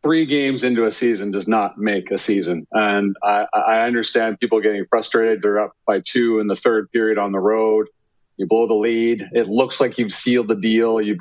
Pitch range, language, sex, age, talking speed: 105-120 Hz, English, male, 40-59, 215 wpm